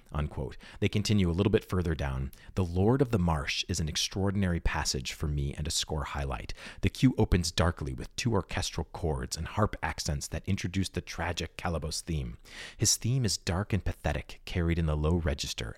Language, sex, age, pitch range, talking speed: English, male, 30-49, 75-95 Hz, 195 wpm